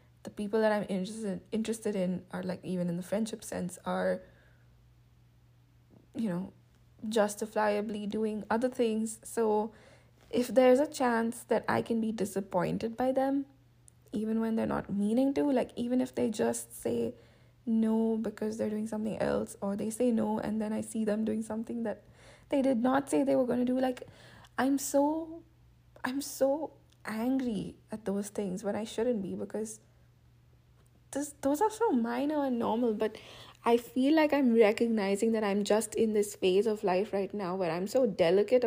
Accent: Indian